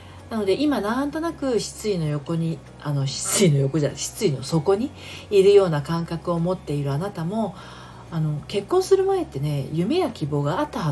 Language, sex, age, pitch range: Japanese, female, 40-59, 140-215 Hz